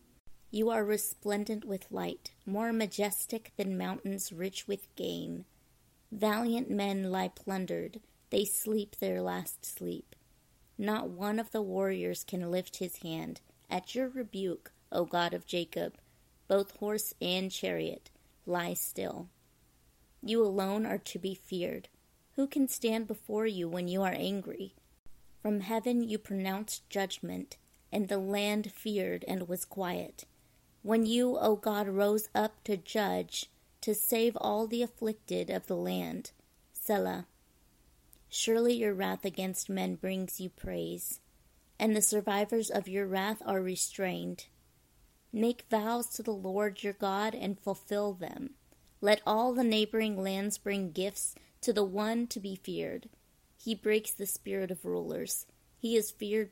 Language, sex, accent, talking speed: English, female, American, 145 wpm